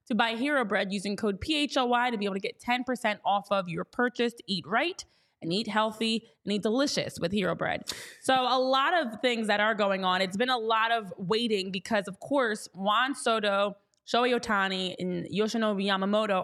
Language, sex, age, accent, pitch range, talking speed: English, female, 20-39, American, 200-245 Hz, 195 wpm